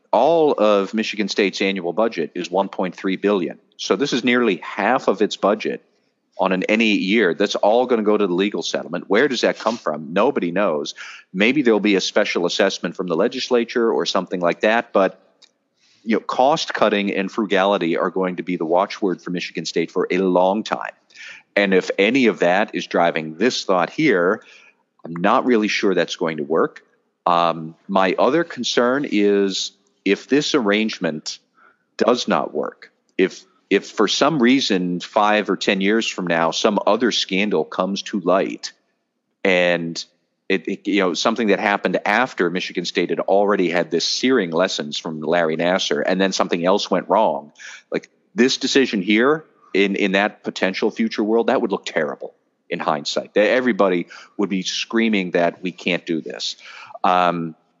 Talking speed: 175 wpm